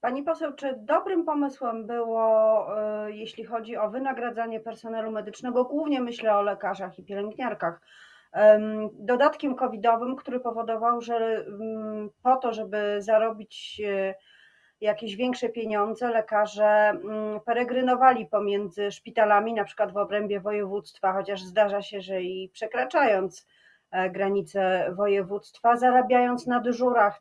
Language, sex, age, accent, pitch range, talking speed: Polish, female, 30-49, native, 200-230 Hz, 110 wpm